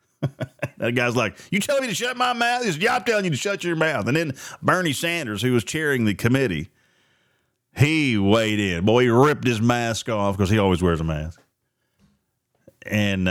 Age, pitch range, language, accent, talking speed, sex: 40-59, 100-155 Hz, English, American, 190 wpm, male